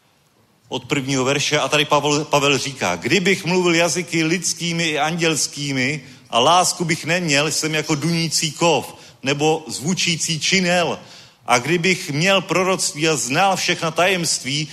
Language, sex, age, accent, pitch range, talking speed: Czech, male, 30-49, native, 130-170 Hz, 135 wpm